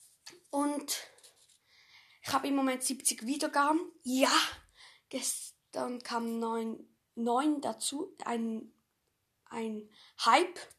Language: German